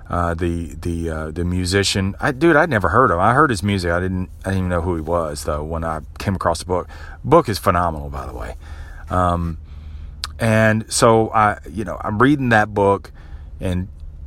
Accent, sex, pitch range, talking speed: American, male, 80-105 Hz, 210 wpm